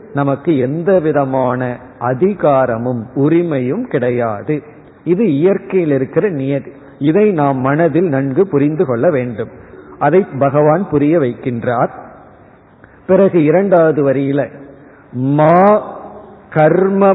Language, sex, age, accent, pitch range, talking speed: Tamil, male, 50-69, native, 140-180 Hz, 90 wpm